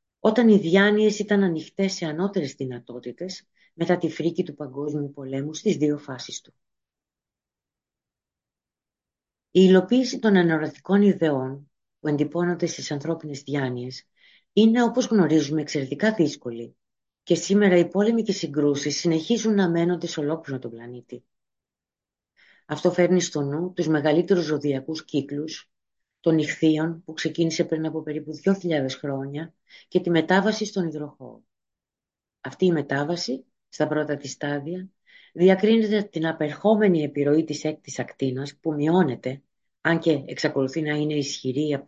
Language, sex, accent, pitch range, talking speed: Greek, female, native, 145-185 Hz, 130 wpm